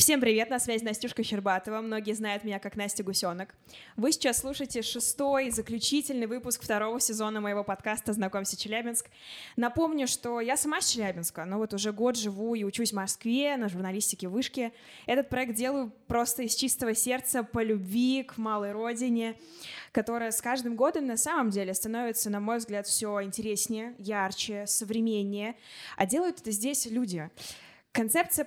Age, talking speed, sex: 20-39, 160 wpm, female